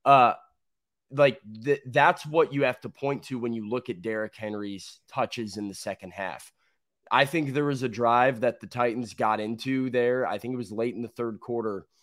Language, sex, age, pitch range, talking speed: English, male, 20-39, 110-135 Hz, 210 wpm